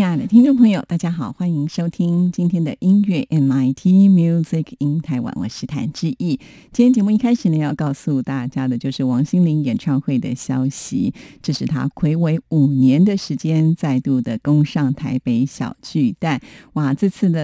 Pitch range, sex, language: 140-185 Hz, female, Chinese